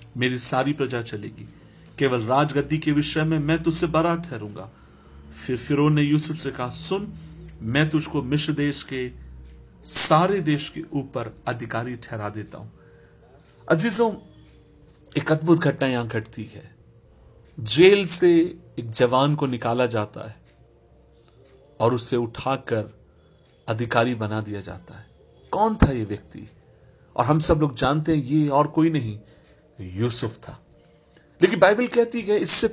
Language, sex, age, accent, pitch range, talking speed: Hindi, male, 50-69, native, 115-160 Hz, 135 wpm